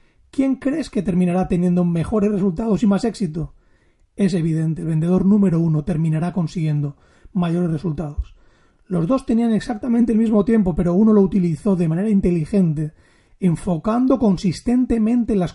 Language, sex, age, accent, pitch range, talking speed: Spanish, male, 30-49, Spanish, 170-205 Hz, 145 wpm